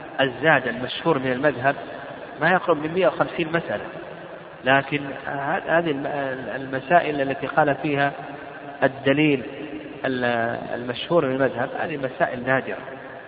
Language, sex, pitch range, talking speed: Arabic, male, 135-165 Hz, 100 wpm